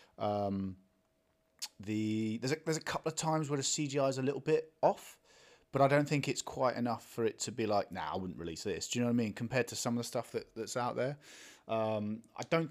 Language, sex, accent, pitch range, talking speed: English, male, British, 95-120 Hz, 250 wpm